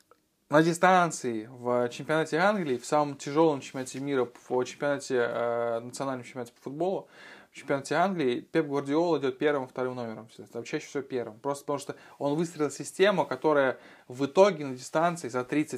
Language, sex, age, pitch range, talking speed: Russian, male, 20-39, 125-160 Hz, 165 wpm